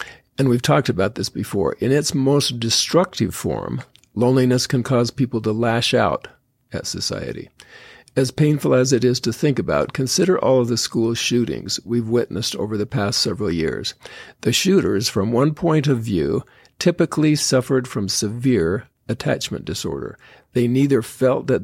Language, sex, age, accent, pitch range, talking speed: English, male, 50-69, American, 115-135 Hz, 160 wpm